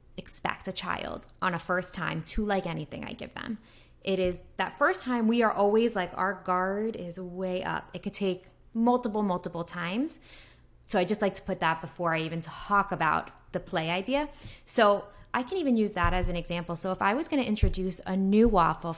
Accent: American